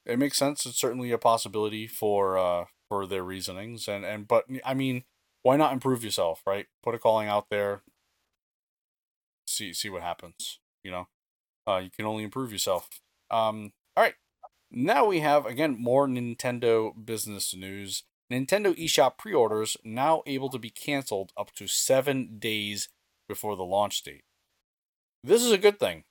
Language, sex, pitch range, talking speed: English, male, 100-130 Hz, 165 wpm